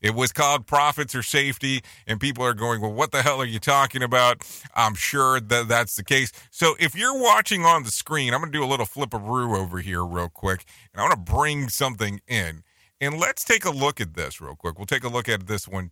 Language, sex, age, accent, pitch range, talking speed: English, male, 40-59, American, 110-150 Hz, 255 wpm